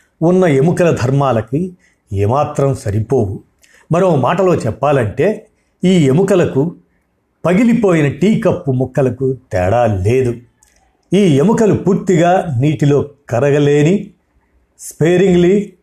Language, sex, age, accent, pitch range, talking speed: Telugu, male, 50-69, native, 130-180 Hz, 85 wpm